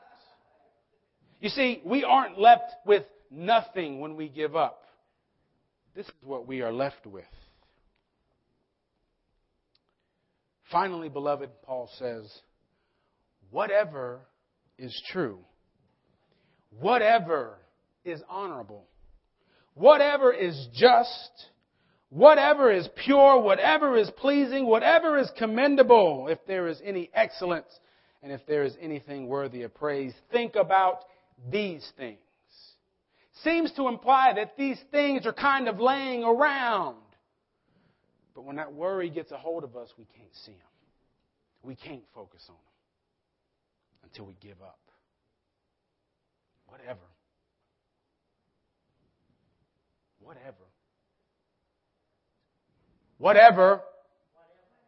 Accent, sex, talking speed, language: American, male, 100 wpm, English